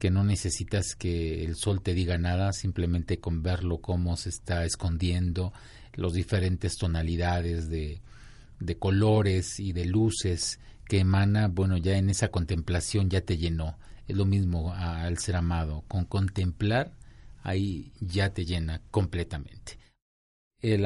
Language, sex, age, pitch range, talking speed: Spanish, male, 40-59, 90-115 Hz, 140 wpm